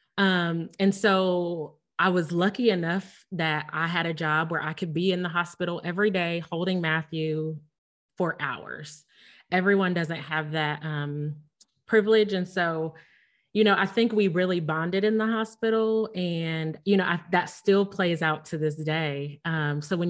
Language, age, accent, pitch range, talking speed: English, 30-49, American, 160-200 Hz, 170 wpm